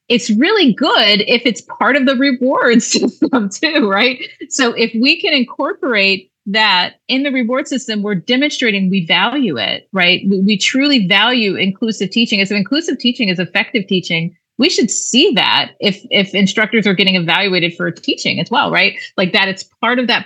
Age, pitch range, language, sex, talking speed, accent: 30-49, 180-235 Hz, English, female, 185 wpm, American